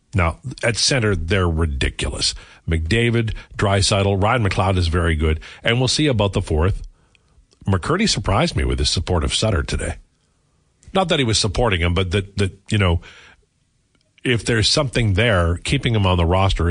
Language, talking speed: English, 170 wpm